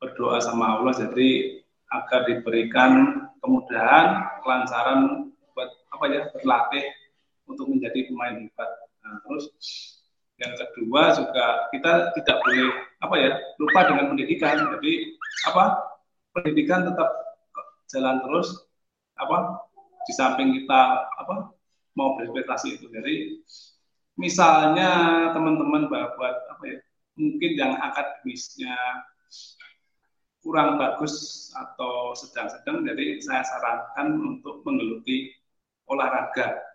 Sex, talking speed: male, 105 wpm